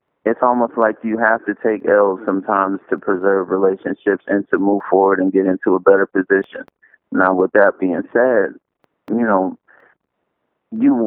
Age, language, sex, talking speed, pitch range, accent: 30-49, English, male, 165 wpm, 100-110 Hz, American